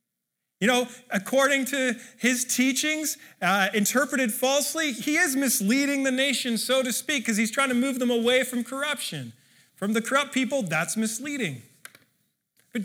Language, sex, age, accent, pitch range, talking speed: English, male, 30-49, American, 175-250 Hz, 155 wpm